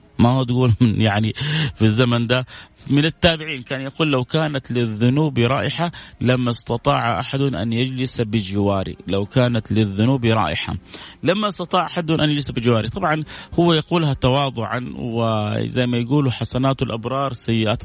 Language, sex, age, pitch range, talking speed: Arabic, male, 30-49, 110-140 Hz, 135 wpm